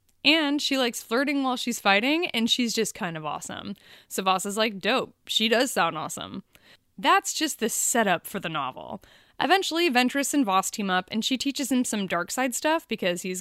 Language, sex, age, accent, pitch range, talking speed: English, female, 20-39, American, 185-255 Hz, 195 wpm